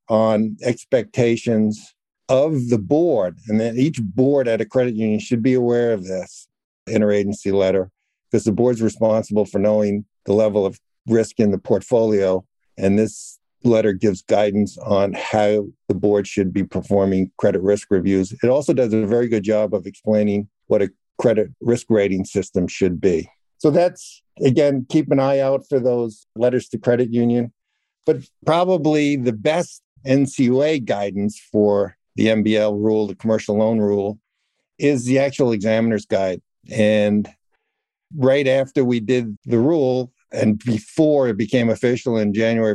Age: 60-79